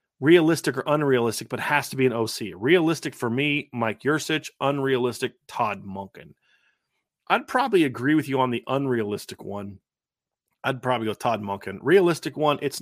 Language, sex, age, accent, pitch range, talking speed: English, male, 40-59, American, 115-145 Hz, 160 wpm